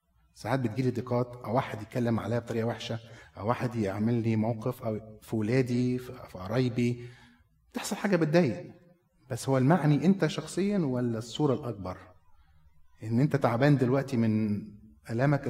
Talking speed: 140 wpm